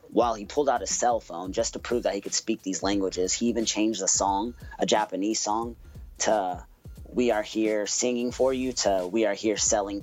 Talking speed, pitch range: 215 wpm, 95-120 Hz